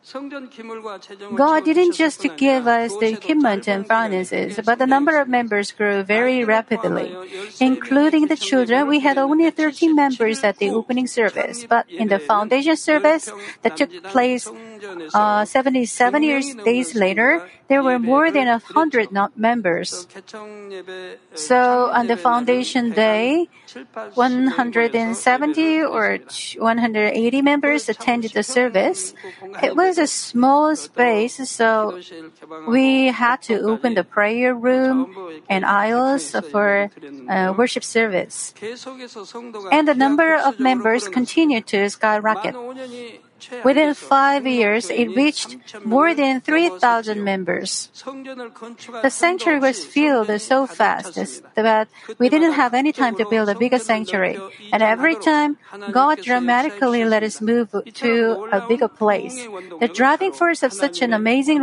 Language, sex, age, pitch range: Korean, female, 40-59, 215-275 Hz